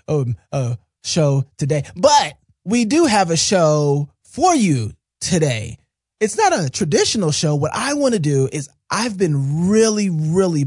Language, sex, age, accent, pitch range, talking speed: English, male, 30-49, American, 130-190 Hz, 155 wpm